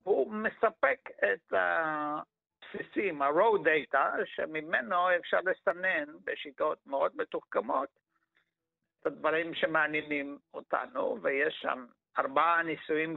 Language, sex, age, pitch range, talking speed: Hebrew, male, 60-79, 160-220 Hz, 90 wpm